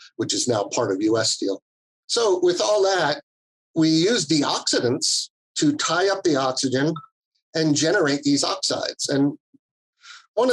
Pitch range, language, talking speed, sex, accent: 125-165 Hz, English, 140 wpm, male, American